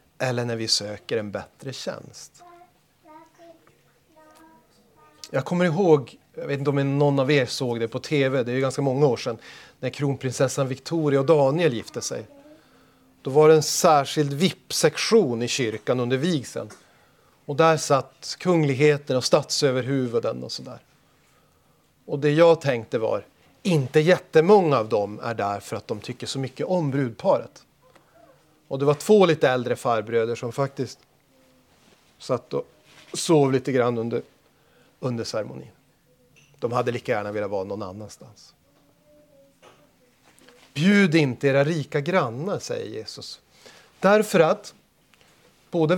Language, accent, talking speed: Swedish, native, 140 wpm